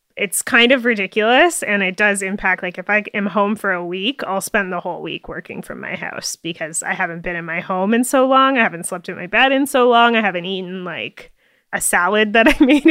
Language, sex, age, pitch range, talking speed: English, female, 20-39, 185-235 Hz, 245 wpm